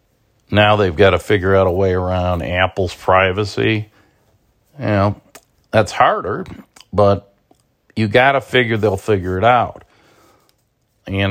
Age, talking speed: 50-69, 135 wpm